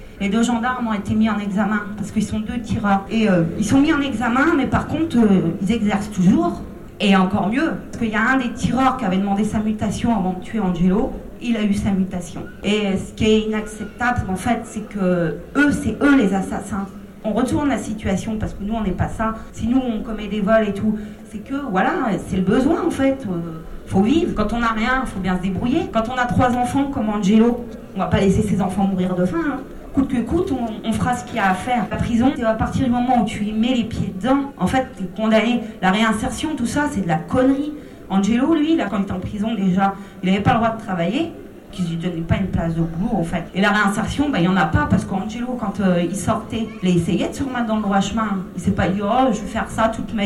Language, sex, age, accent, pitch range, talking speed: French, female, 40-59, French, 195-245 Hz, 265 wpm